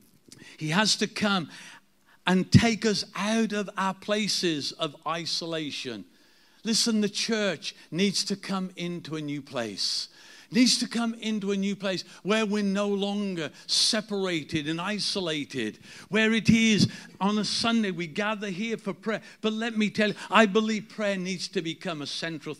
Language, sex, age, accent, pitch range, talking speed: English, male, 50-69, British, 160-205 Hz, 160 wpm